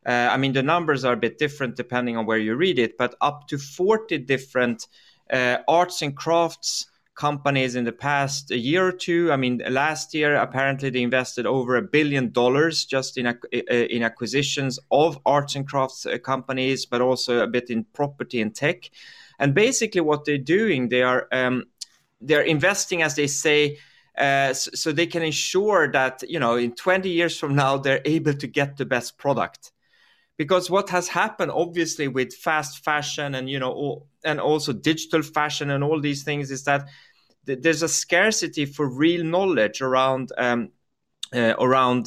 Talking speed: 180 wpm